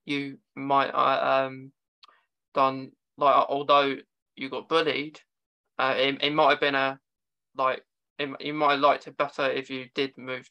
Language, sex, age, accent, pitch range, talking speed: English, male, 20-39, British, 135-170 Hz, 160 wpm